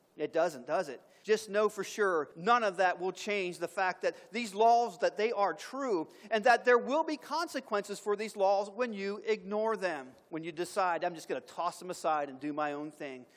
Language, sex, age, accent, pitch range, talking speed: English, male, 40-59, American, 185-230 Hz, 225 wpm